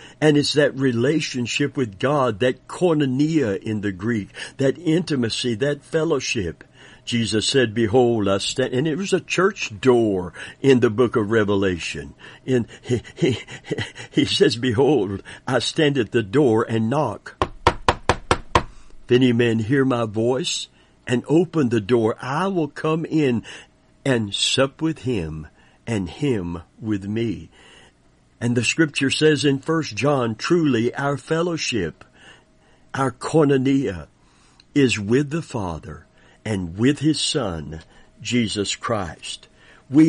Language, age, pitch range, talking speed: English, 60-79, 110-145 Hz, 135 wpm